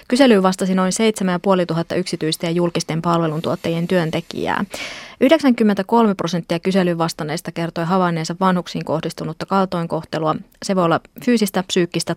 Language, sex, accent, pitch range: Finnish, female, native, 170-190 Hz